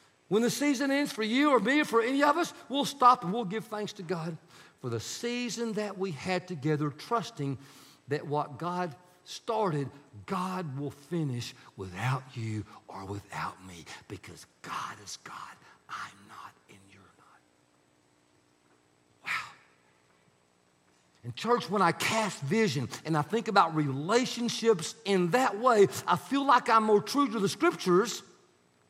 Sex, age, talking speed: male, 50-69, 155 wpm